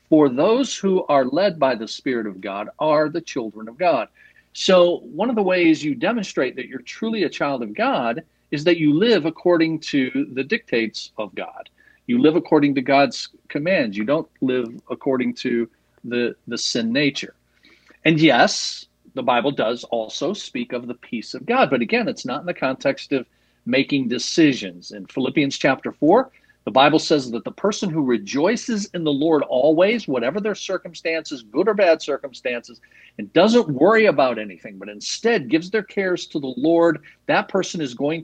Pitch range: 125-185 Hz